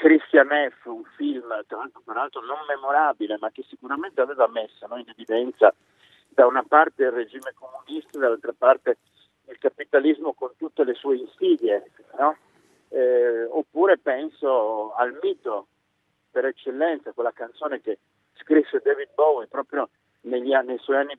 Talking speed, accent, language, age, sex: 145 wpm, native, Italian, 50-69, male